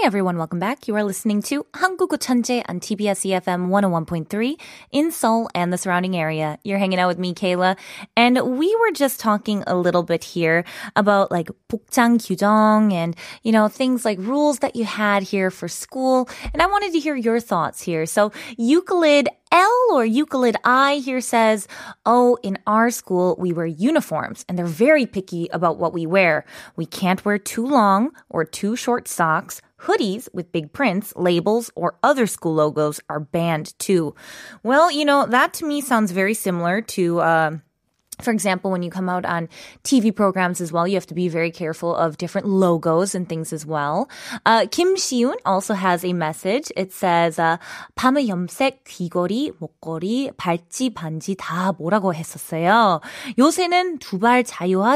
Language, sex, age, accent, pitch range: Korean, female, 20-39, American, 175-255 Hz